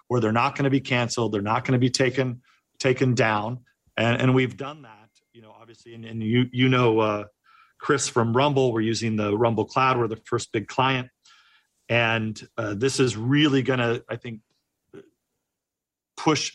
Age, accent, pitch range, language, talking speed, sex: 40-59, American, 115-135 Hz, English, 190 wpm, male